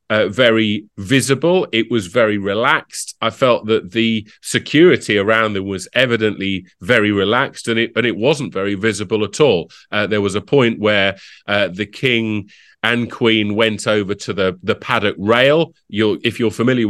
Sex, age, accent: male, 30-49, British